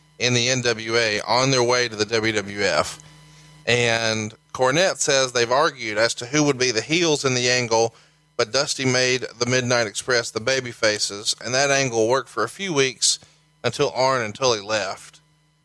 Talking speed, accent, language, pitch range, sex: 175 wpm, American, English, 105-135 Hz, male